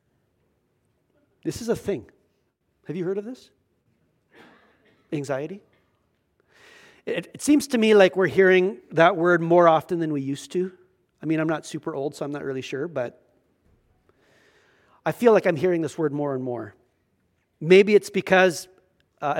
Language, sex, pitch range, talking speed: English, male, 150-195 Hz, 160 wpm